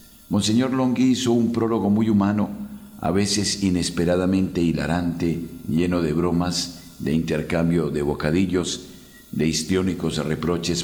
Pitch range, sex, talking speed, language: 80-100 Hz, male, 115 wpm, Spanish